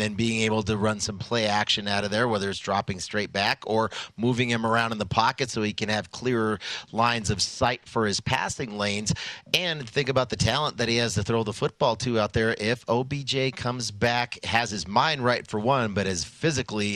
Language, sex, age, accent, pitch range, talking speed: English, male, 40-59, American, 100-120 Hz, 225 wpm